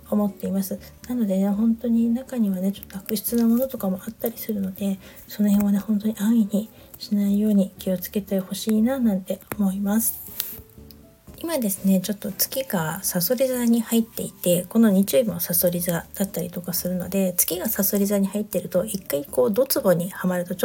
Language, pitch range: Japanese, 185-215 Hz